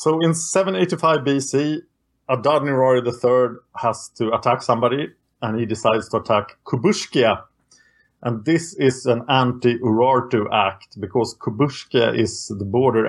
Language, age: English, 30-49